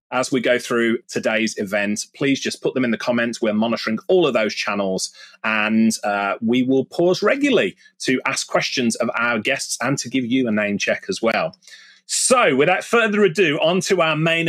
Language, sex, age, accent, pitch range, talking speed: English, male, 30-49, British, 110-175 Hz, 200 wpm